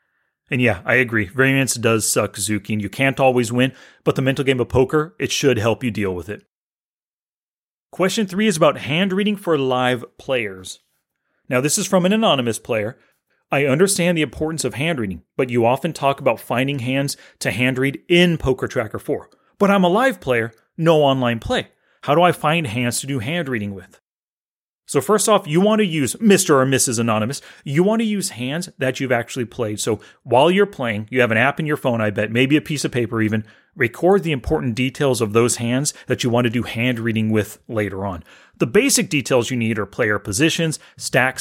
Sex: male